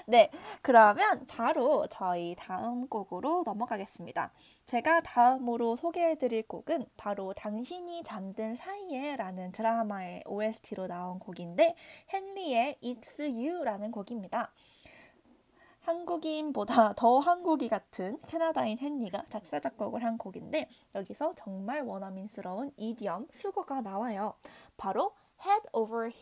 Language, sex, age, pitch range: Korean, female, 20-39, 205-310 Hz